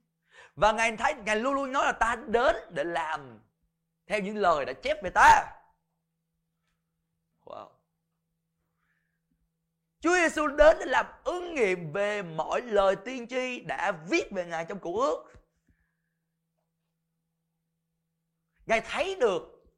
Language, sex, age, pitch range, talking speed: Vietnamese, male, 20-39, 165-275 Hz, 125 wpm